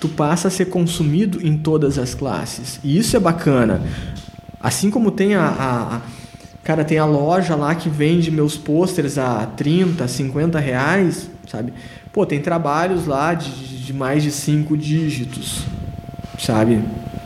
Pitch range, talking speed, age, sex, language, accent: 135-175 Hz, 155 wpm, 20-39, male, Portuguese, Brazilian